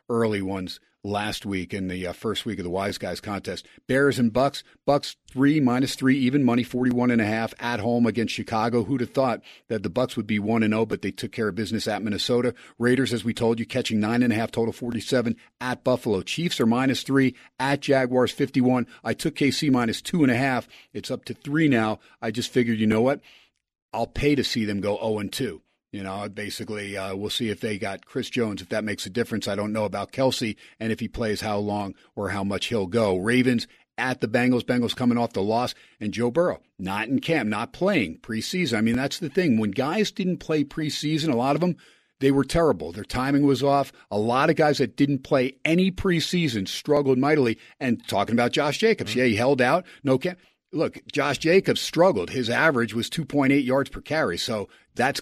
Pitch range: 110-135 Hz